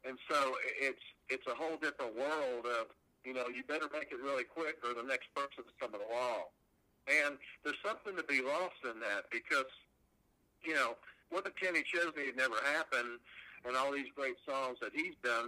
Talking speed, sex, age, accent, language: 190 wpm, male, 60-79, American, English